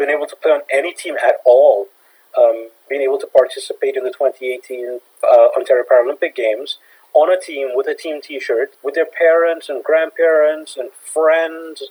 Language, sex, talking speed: English, male, 175 wpm